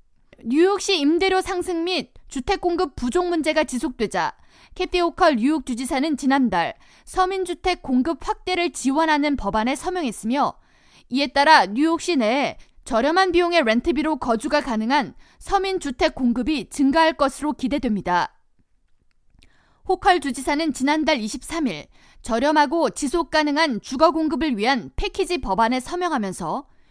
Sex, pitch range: female, 255-345 Hz